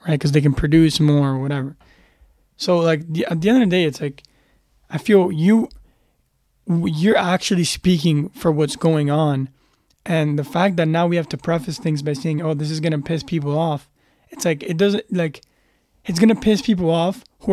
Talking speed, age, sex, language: 210 wpm, 20-39, male, English